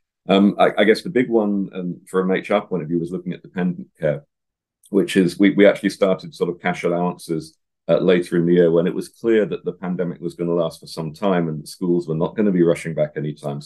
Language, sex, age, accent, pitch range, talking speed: English, male, 40-59, British, 80-95 Hz, 255 wpm